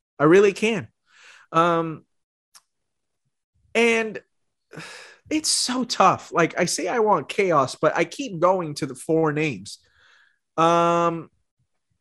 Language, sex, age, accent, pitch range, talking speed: English, male, 30-49, American, 130-180 Hz, 115 wpm